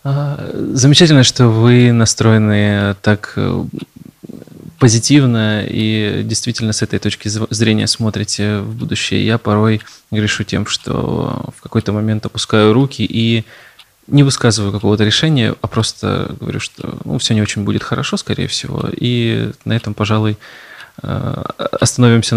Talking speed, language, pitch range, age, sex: 125 wpm, Russian, 105-120 Hz, 20-39, male